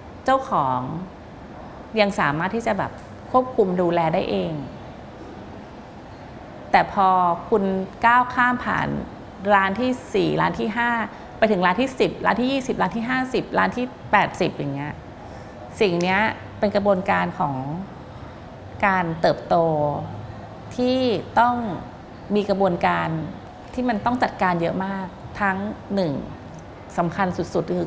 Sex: female